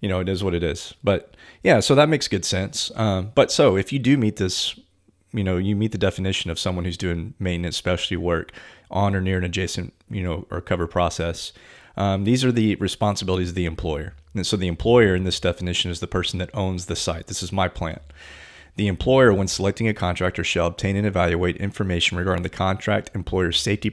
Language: English